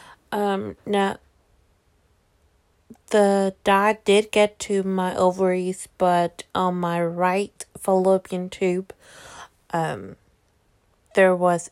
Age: 30-49